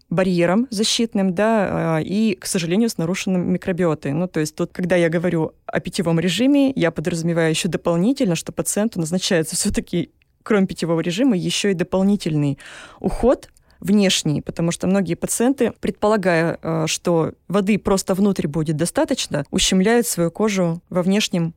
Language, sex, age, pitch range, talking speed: Russian, female, 20-39, 170-205 Hz, 140 wpm